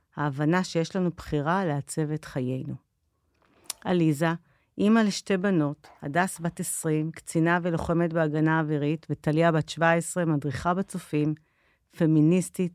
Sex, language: female, Hebrew